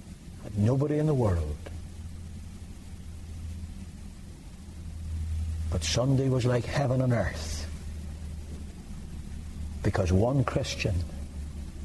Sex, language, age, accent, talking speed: male, English, 60-79, American, 70 wpm